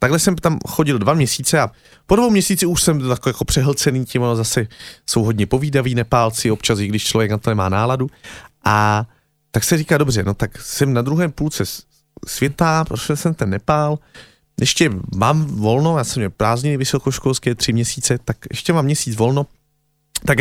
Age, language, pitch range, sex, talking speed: 30-49, Slovak, 115-150 Hz, male, 180 wpm